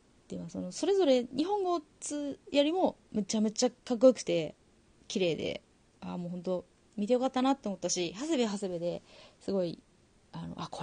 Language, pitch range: Japanese, 170-270 Hz